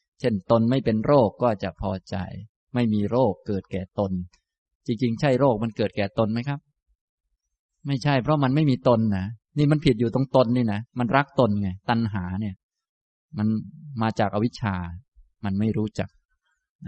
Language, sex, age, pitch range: Thai, male, 20-39, 95-125 Hz